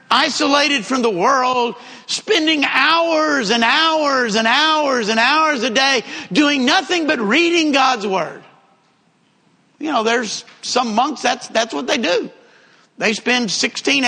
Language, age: English, 50-69